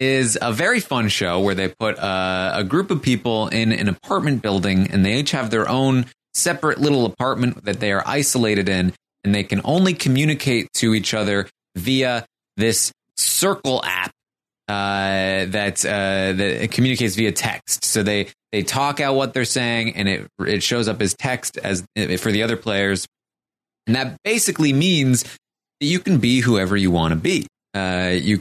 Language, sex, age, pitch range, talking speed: English, male, 20-39, 95-130 Hz, 180 wpm